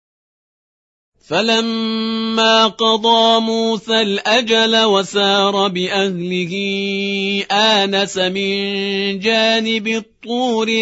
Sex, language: male, Persian